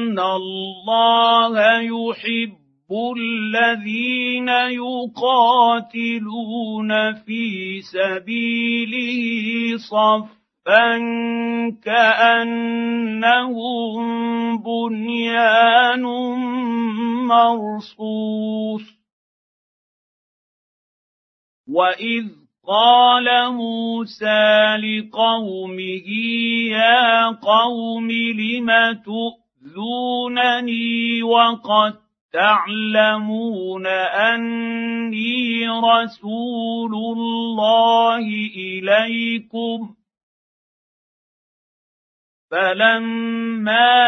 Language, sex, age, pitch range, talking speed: Arabic, male, 50-69, 215-230 Hz, 35 wpm